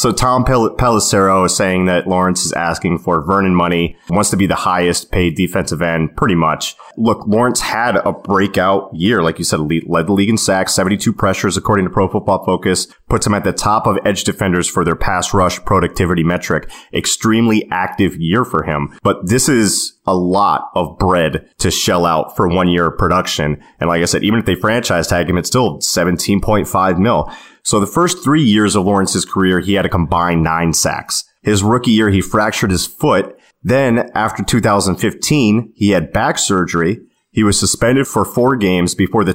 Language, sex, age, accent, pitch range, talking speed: English, male, 30-49, American, 90-105 Hz, 195 wpm